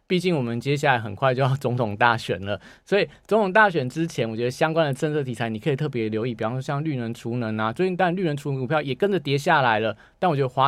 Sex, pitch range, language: male, 115-155 Hz, Chinese